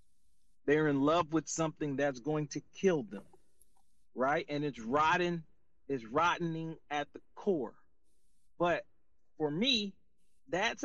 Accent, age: American, 40-59